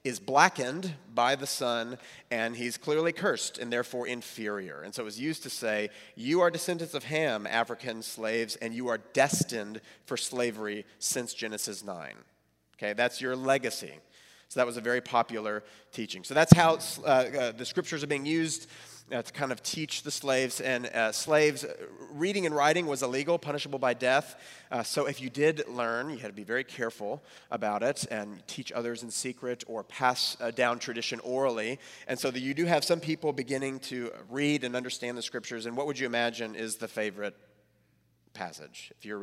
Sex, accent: male, American